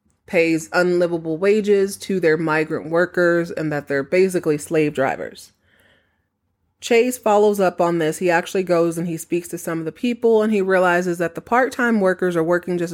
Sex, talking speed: female, 180 wpm